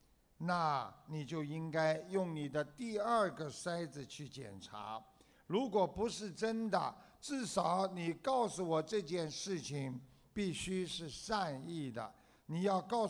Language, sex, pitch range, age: Chinese, male, 145-190 Hz, 60-79